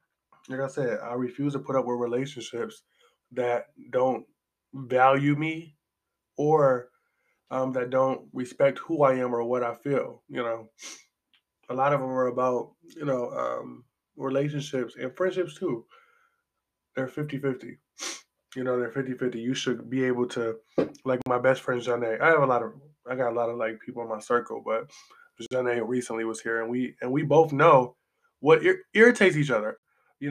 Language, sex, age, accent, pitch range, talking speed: English, male, 20-39, American, 120-145 Hz, 175 wpm